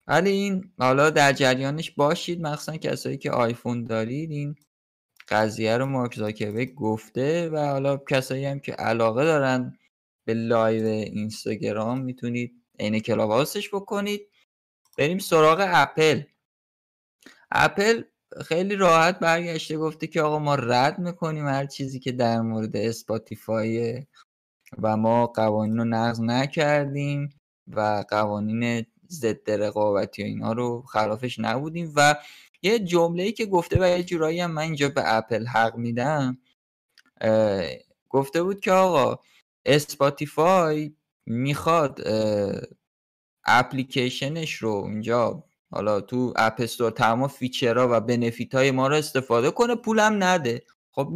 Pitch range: 115-160 Hz